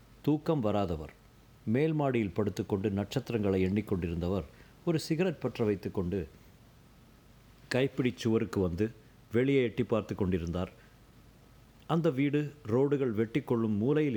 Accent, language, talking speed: native, Tamil, 105 wpm